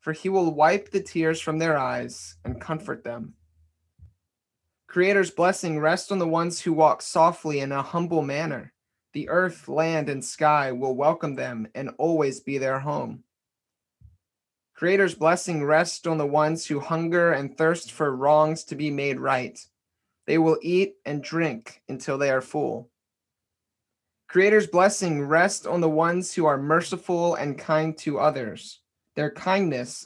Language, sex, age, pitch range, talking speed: English, male, 30-49, 130-165 Hz, 155 wpm